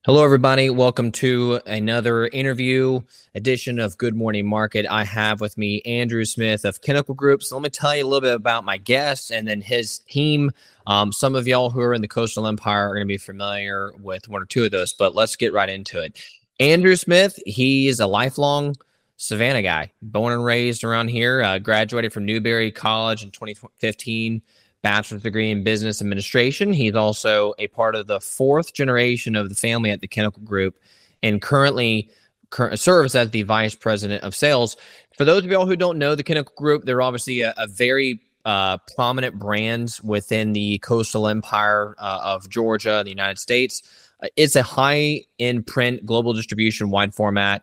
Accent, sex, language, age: American, male, English, 20-39